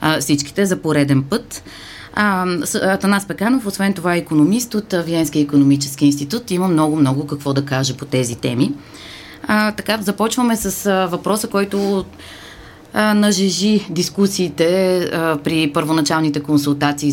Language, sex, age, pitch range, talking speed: Bulgarian, female, 20-39, 145-190 Hz, 125 wpm